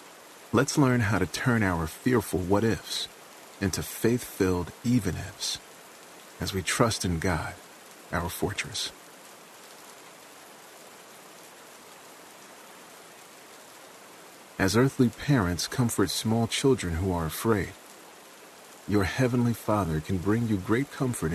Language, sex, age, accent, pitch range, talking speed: English, male, 40-59, American, 90-115 Hz, 100 wpm